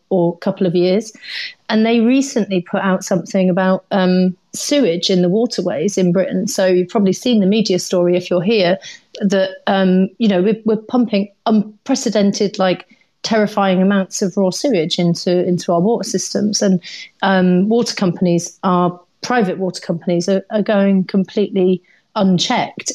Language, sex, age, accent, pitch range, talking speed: English, female, 30-49, British, 185-210 Hz, 155 wpm